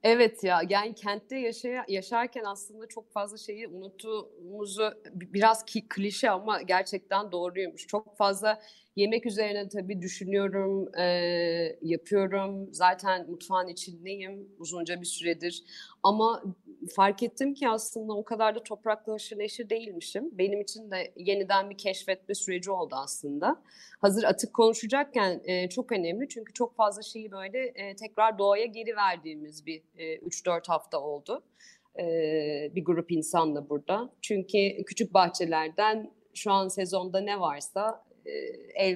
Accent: native